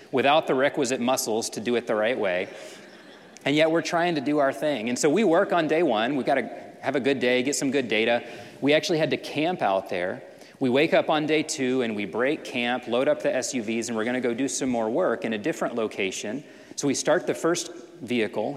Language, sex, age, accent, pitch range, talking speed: English, male, 30-49, American, 120-145 Hz, 245 wpm